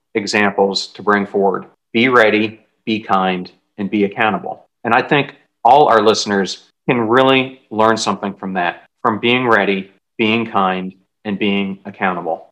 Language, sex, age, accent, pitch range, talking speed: English, male, 40-59, American, 100-115 Hz, 150 wpm